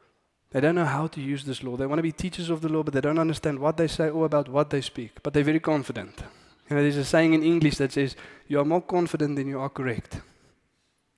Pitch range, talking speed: 130-160 Hz, 270 wpm